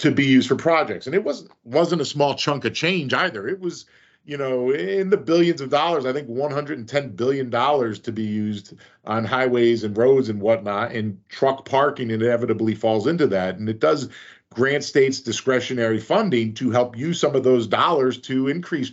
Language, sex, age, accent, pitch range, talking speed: English, male, 40-59, American, 110-140 Hz, 195 wpm